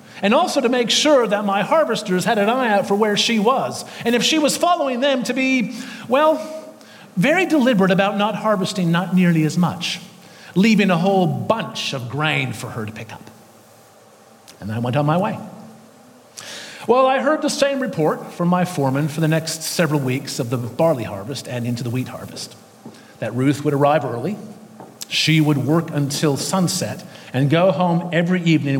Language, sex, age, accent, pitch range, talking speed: English, male, 40-59, American, 155-235 Hz, 185 wpm